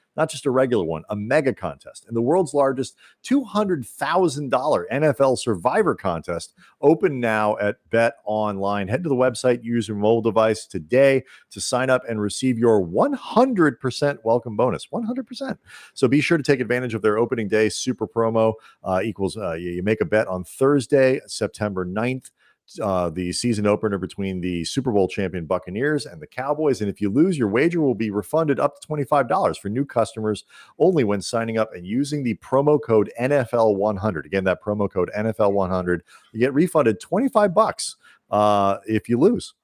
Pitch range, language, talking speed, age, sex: 105-140 Hz, English, 175 wpm, 40-59, male